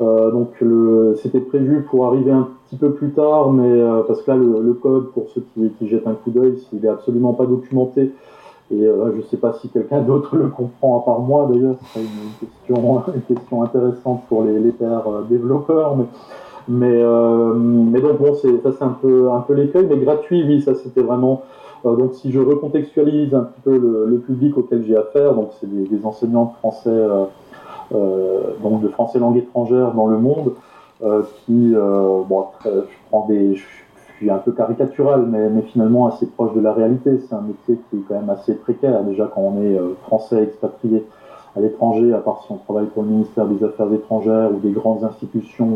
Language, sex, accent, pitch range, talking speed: French, male, French, 110-130 Hz, 210 wpm